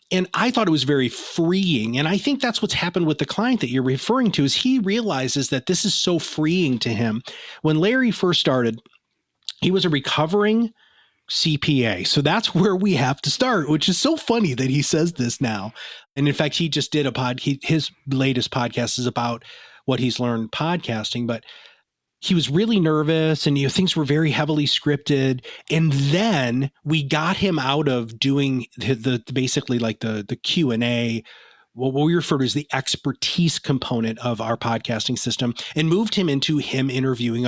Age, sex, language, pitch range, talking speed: 30-49, male, English, 125-170 Hz, 195 wpm